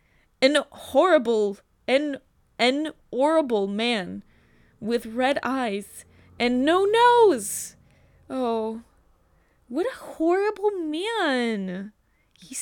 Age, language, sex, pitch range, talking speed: 10-29, English, female, 185-260 Hz, 85 wpm